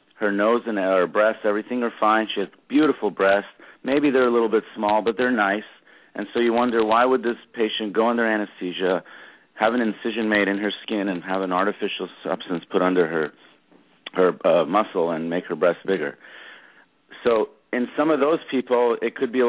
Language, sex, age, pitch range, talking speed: English, male, 40-59, 95-120 Hz, 200 wpm